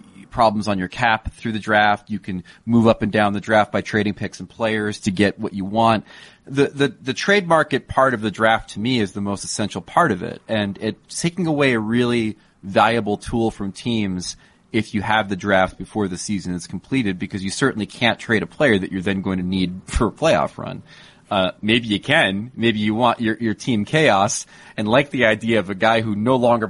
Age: 30-49